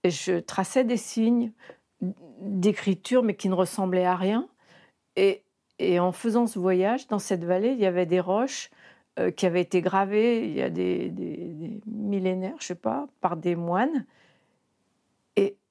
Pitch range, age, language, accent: 180-220 Hz, 50-69, French, French